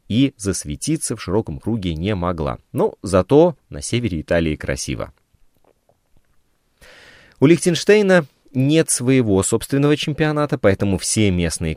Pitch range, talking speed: 85-130 Hz, 110 wpm